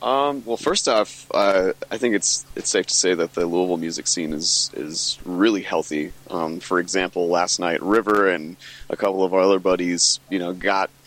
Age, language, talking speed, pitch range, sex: 30-49, English, 200 wpm, 90-110 Hz, male